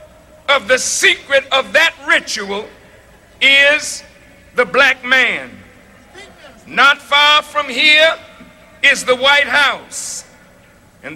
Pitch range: 265-295 Hz